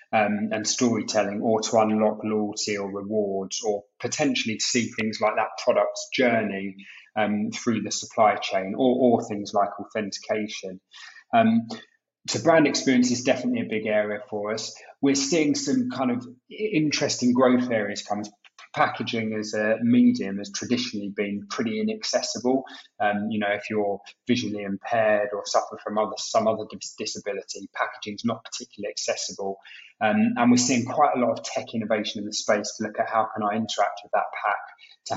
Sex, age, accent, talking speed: male, 20-39, British, 170 wpm